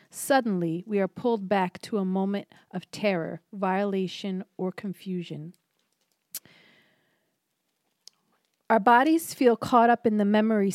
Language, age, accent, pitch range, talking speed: English, 40-59, American, 180-220 Hz, 115 wpm